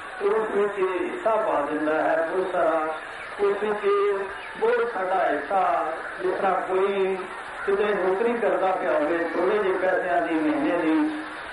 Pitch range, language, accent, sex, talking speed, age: 170-215 Hz, Hindi, native, male, 90 wpm, 40-59